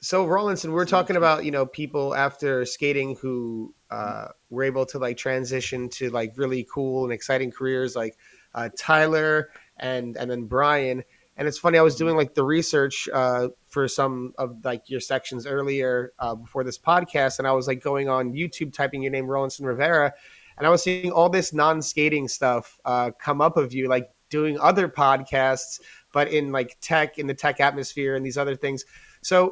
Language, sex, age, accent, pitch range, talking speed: English, male, 30-49, American, 130-160 Hz, 190 wpm